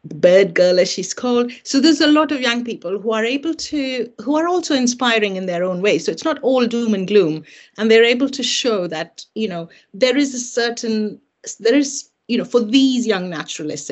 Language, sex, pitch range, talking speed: English, female, 185-255 Hz, 220 wpm